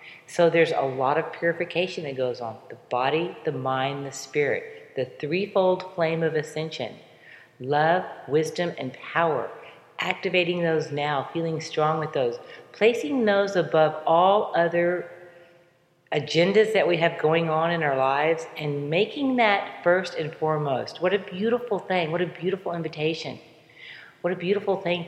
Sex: female